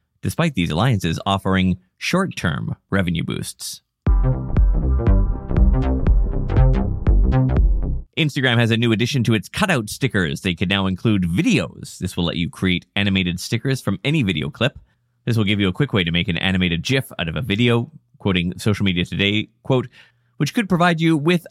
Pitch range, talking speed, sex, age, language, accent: 95-130 Hz, 160 wpm, male, 30-49, English, American